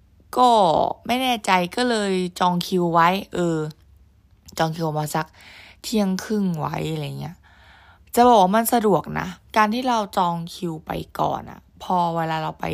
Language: Thai